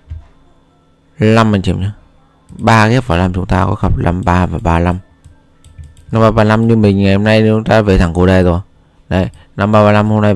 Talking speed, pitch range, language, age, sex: 190 wpm, 85-105 Hz, Vietnamese, 20-39, male